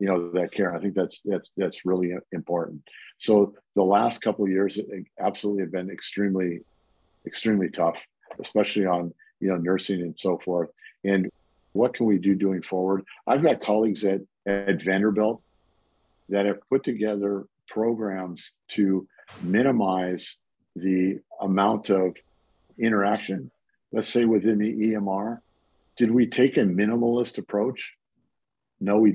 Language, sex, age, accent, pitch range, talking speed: English, male, 50-69, American, 95-110 Hz, 140 wpm